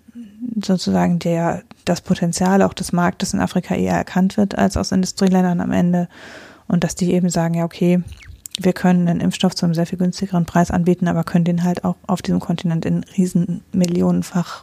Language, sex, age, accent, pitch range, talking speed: German, female, 20-39, German, 170-185 Hz, 185 wpm